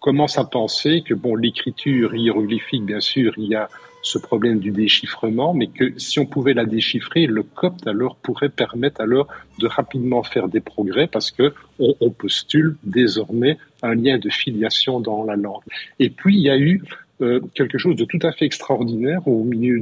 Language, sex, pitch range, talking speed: French, male, 115-150 Hz, 185 wpm